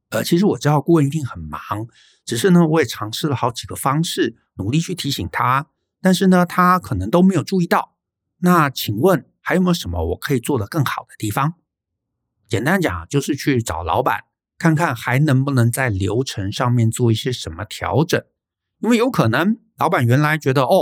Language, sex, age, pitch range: Chinese, male, 50-69, 110-155 Hz